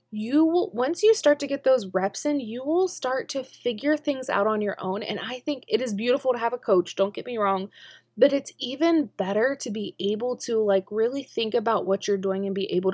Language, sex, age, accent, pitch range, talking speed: English, female, 20-39, American, 195-270 Hz, 240 wpm